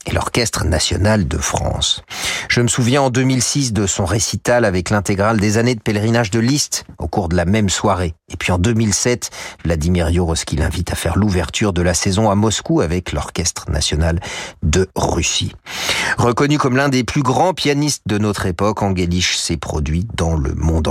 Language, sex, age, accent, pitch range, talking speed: French, male, 40-59, French, 90-120 Hz, 180 wpm